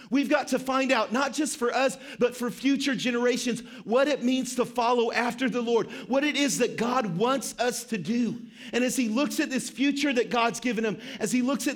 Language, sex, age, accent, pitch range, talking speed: English, male, 40-59, American, 190-245 Hz, 230 wpm